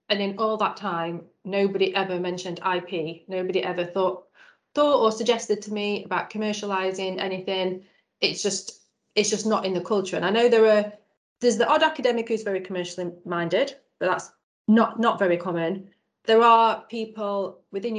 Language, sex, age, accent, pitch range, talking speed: English, female, 30-49, British, 180-215 Hz, 170 wpm